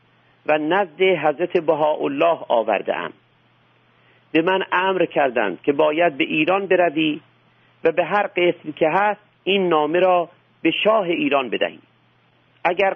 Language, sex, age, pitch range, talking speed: Persian, male, 50-69, 150-195 Hz, 130 wpm